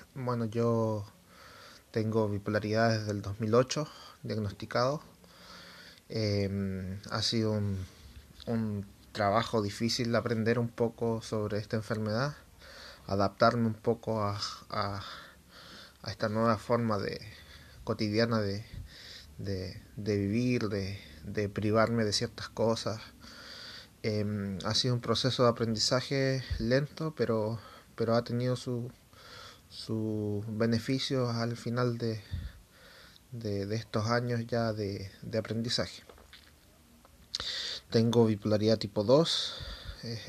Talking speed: 110 wpm